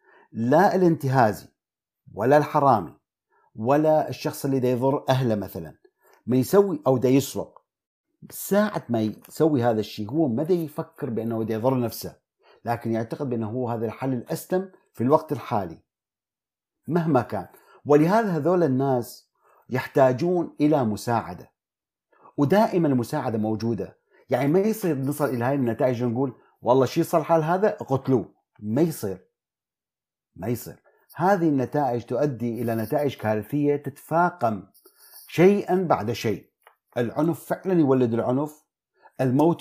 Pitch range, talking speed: 115-165 Hz, 125 wpm